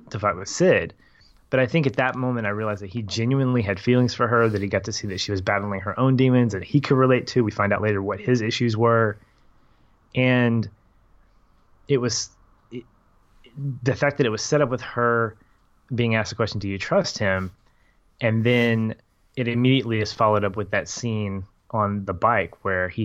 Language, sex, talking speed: English, male, 205 wpm